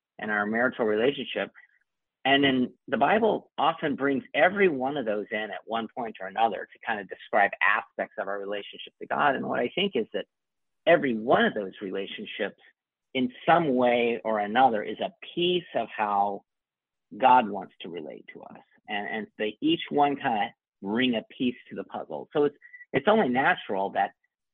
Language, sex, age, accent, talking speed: English, male, 50-69, American, 185 wpm